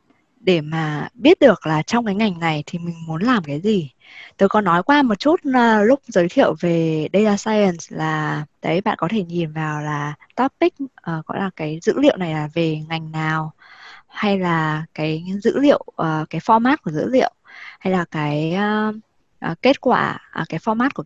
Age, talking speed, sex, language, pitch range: 20-39, 180 wpm, female, Vietnamese, 165-230 Hz